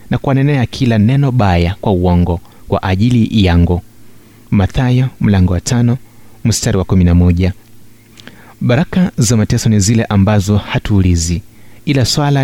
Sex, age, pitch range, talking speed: male, 30-49, 105-125 Hz, 125 wpm